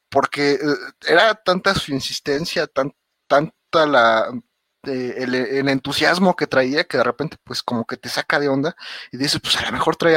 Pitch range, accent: 115-140 Hz, Mexican